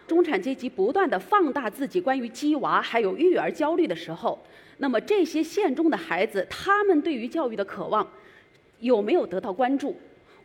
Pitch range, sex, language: 230-330 Hz, female, Chinese